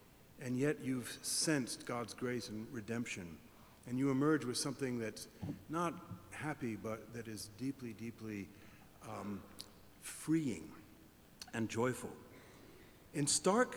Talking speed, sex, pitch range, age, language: 120 wpm, male, 110-150 Hz, 50-69, English